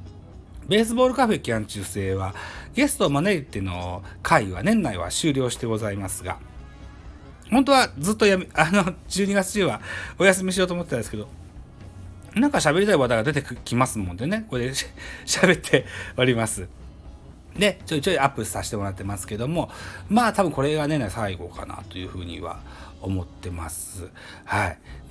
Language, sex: Japanese, male